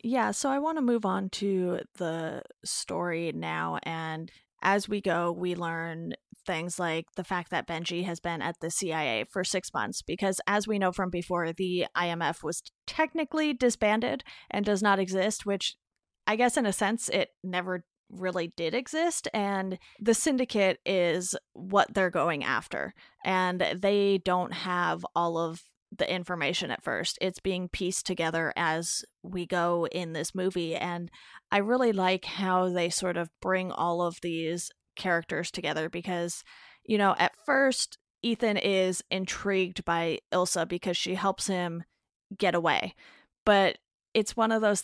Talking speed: 160 wpm